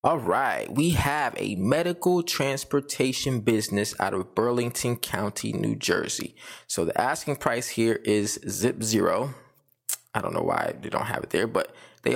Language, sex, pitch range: English, male, 115-145 Hz